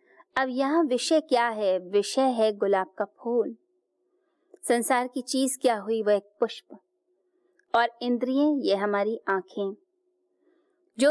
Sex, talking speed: female, 125 wpm